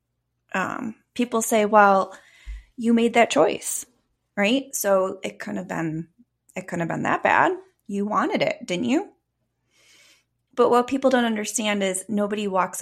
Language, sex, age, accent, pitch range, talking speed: English, female, 20-39, American, 160-220 Hz, 140 wpm